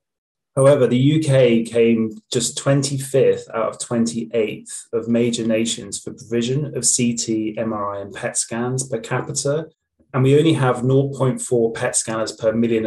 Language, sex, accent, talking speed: English, male, British, 145 wpm